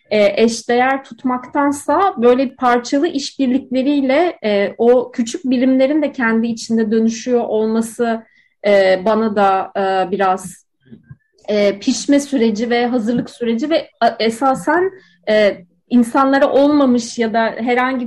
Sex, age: female, 30-49